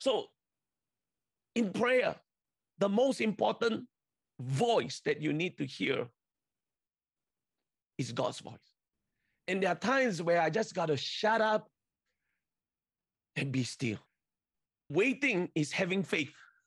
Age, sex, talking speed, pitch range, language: 40-59, male, 120 wpm, 150-210 Hz, English